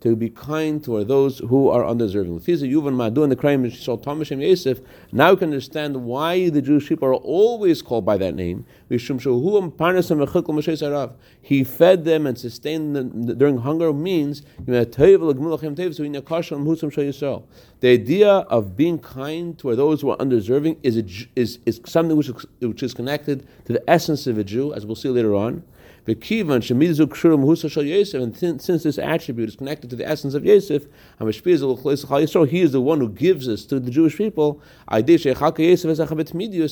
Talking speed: 135 wpm